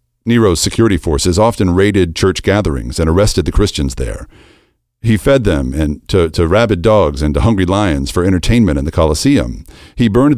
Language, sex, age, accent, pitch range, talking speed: English, male, 50-69, American, 80-110 Hz, 175 wpm